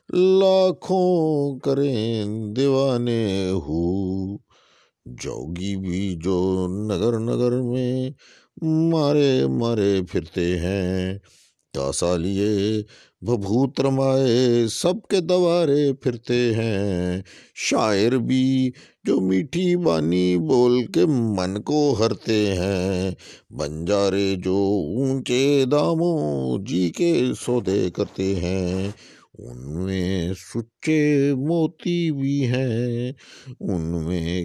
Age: 50-69